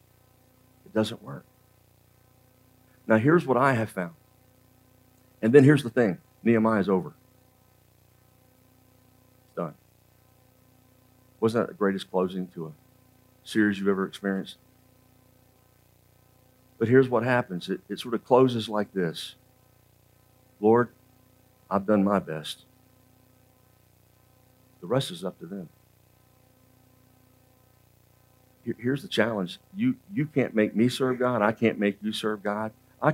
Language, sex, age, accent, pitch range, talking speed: English, male, 50-69, American, 110-130 Hz, 120 wpm